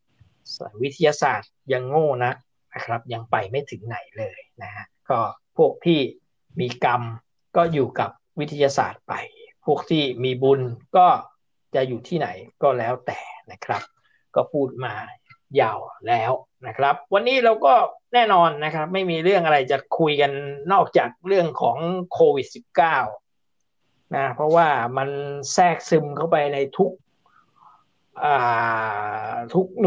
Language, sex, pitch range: Thai, male, 125-185 Hz